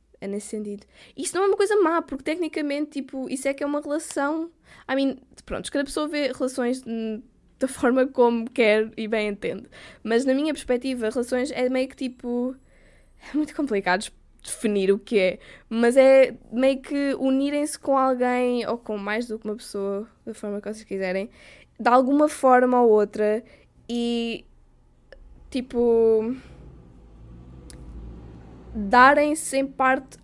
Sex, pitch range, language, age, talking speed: female, 220-265 Hz, Portuguese, 10-29, 150 wpm